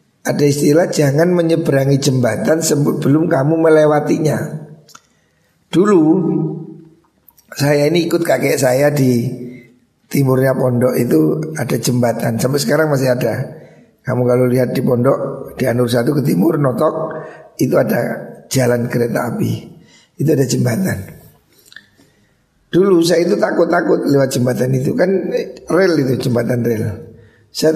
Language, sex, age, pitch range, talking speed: Indonesian, male, 60-79, 130-170 Hz, 125 wpm